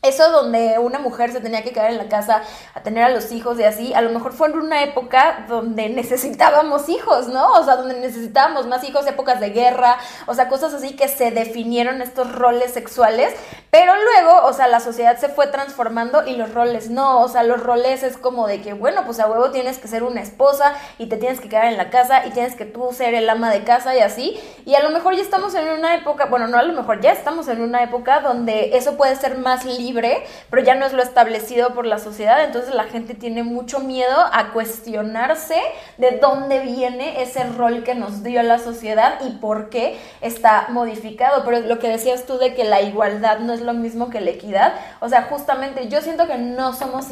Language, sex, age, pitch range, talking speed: Spanish, female, 20-39, 230-270 Hz, 230 wpm